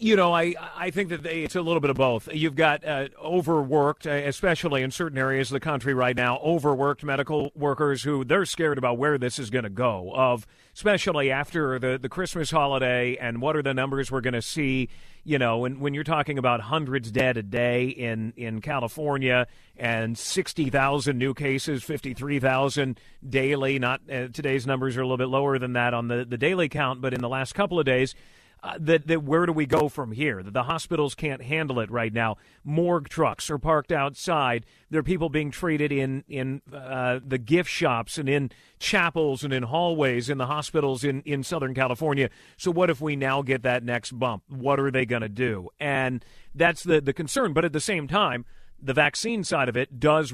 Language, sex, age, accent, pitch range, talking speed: English, male, 40-59, American, 125-155 Hz, 210 wpm